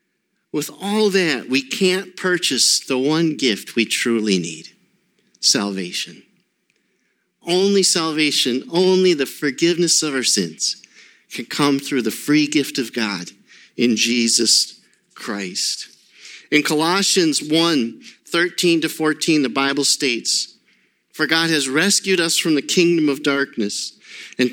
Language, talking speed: English, 125 wpm